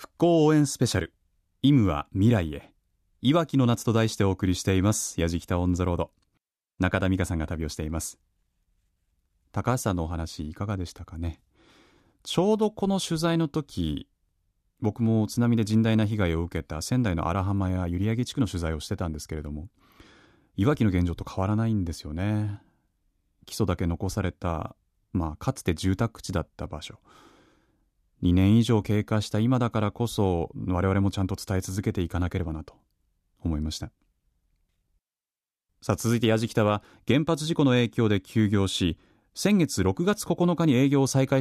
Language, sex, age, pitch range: Japanese, male, 30-49, 90-120 Hz